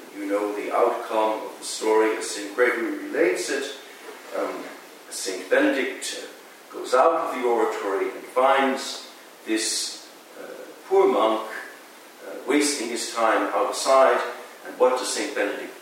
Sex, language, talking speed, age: male, English, 135 wpm, 50-69